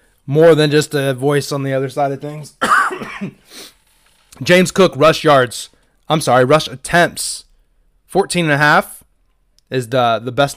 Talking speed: 135 wpm